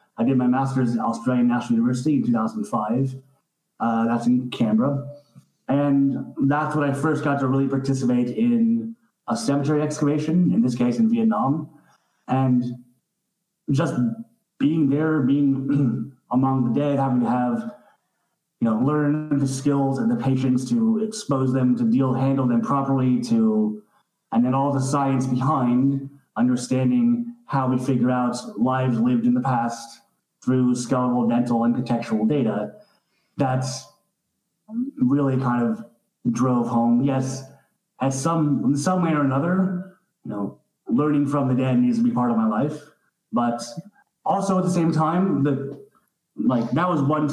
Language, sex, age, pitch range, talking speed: English, male, 30-49, 125-160 Hz, 150 wpm